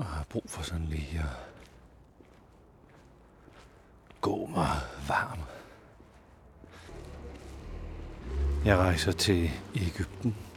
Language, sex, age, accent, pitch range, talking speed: Danish, male, 60-79, native, 75-95 Hz, 80 wpm